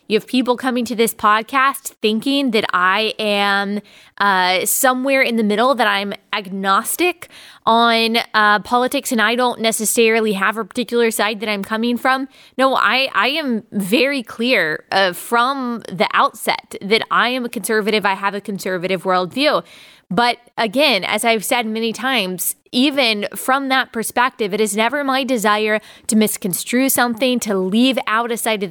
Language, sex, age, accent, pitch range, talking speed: English, female, 20-39, American, 210-245 Hz, 165 wpm